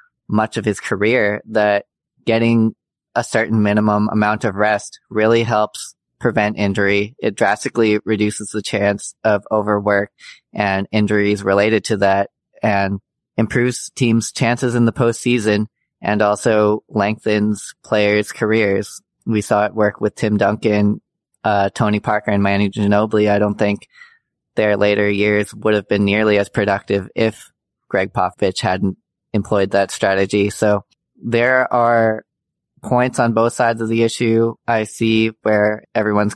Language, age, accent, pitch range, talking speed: English, 20-39, American, 100-110 Hz, 140 wpm